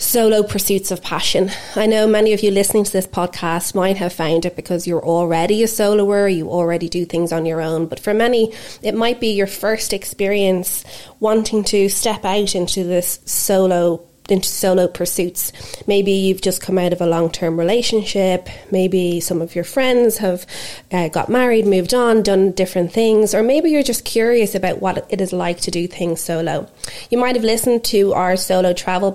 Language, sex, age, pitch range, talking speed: English, female, 30-49, 180-220 Hz, 190 wpm